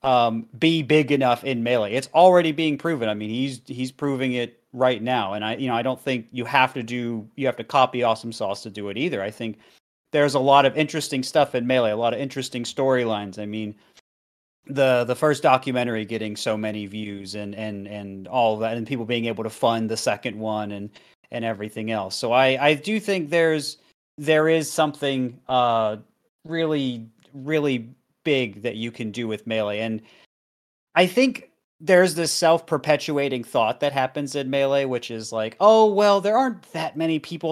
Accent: American